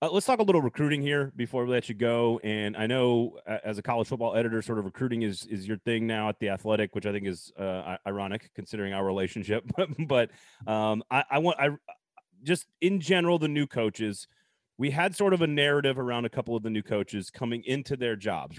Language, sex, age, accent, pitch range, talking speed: English, male, 30-49, American, 105-130 Hz, 225 wpm